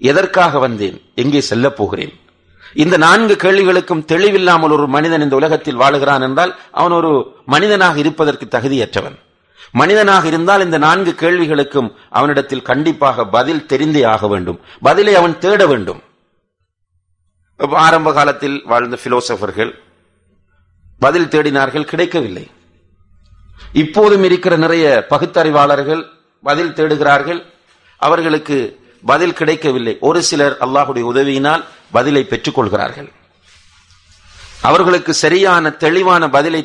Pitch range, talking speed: 110-160 Hz, 110 wpm